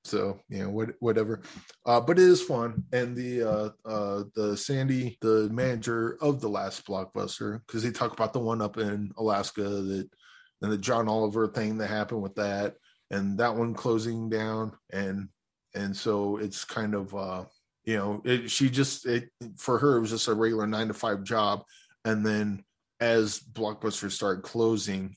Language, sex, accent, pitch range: English, male, American, 105-120 Hz